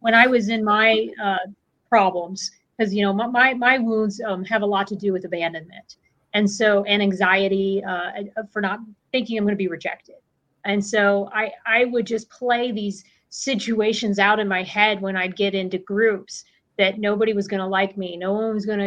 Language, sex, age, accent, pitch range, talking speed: English, female, 30-49, American, 195-225 Hz, 195 wpm